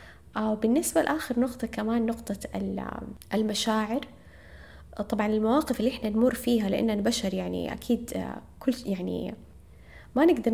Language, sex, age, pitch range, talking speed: Arabic, female, 20-39, 200-240 Hz, 120 wpm